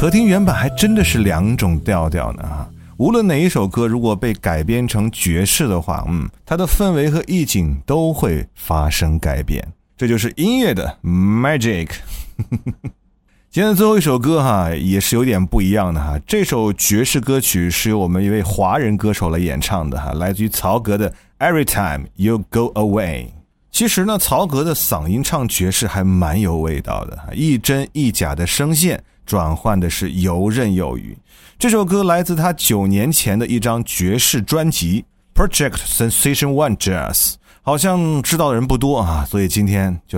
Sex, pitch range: male, 90-145 Hz